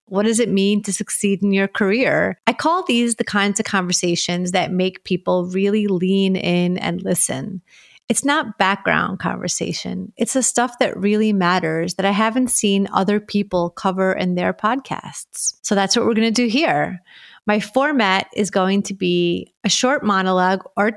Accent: American